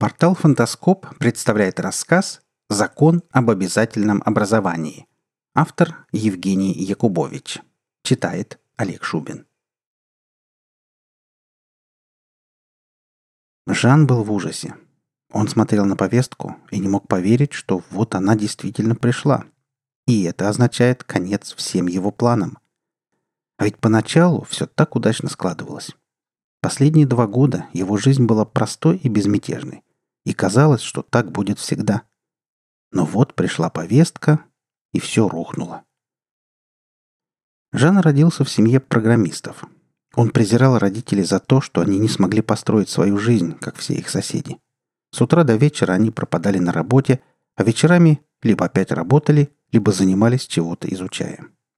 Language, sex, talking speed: Russian, male, 120 wpm